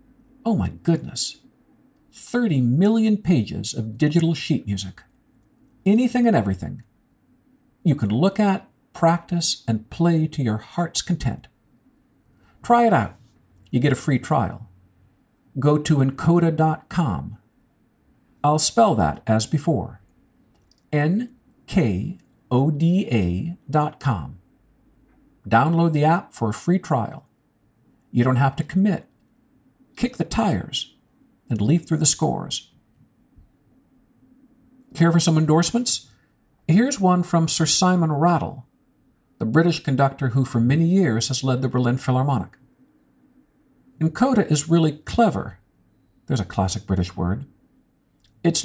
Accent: American